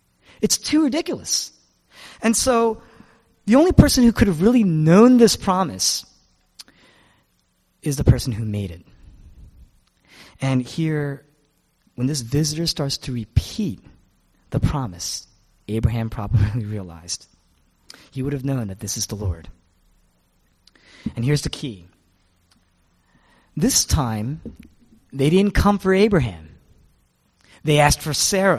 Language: English